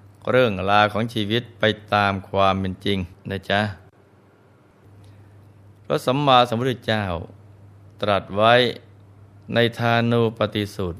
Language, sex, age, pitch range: Thai, male, 20-39, 100-115 Hz